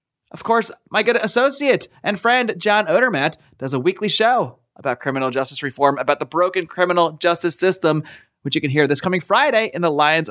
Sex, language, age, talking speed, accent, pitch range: male, English, 30-49, 190 wpm, American, 170-255 Hz